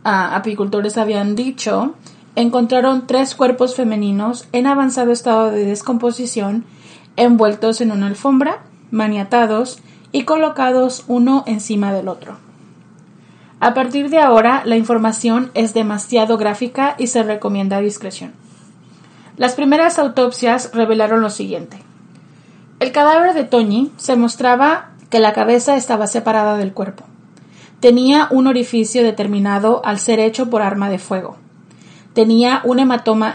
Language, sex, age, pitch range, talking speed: Spanish, female, 30-49, 210-255 Hz, 125 wpm